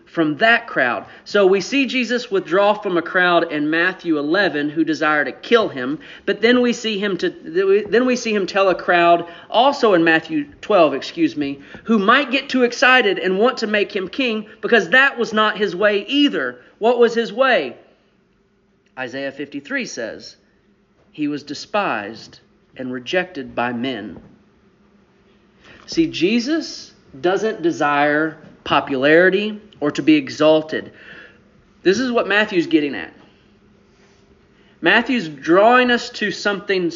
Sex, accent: male, American